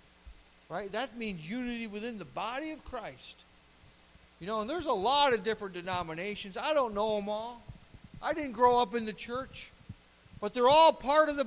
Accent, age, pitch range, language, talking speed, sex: American, 50-69, 195-275 Hz, English, 190 wpm, male